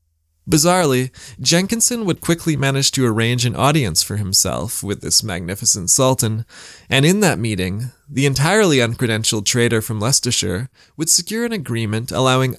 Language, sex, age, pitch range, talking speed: English, male, 20-39, 110-140 Hz, 145 wpm